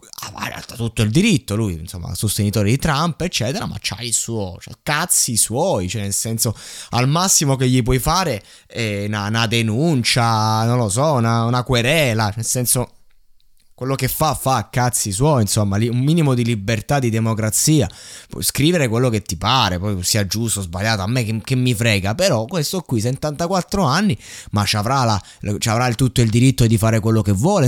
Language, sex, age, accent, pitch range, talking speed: Italian, male, 20-39, native, 105-140 Hz, 195 wpm